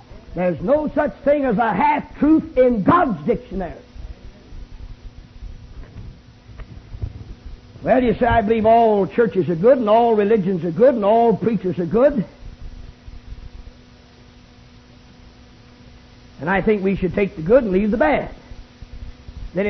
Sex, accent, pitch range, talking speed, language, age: male, American, 180-260 Hz, 130 wpm, English, 50-69